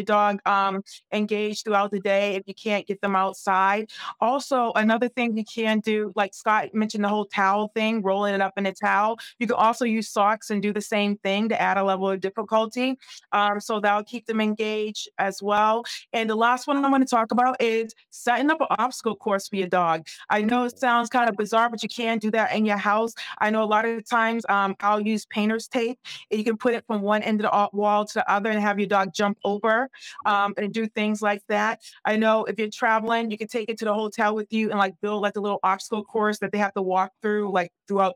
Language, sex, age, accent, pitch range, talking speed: English, female, 30-49, American, 195-220 Hz, 245 wpm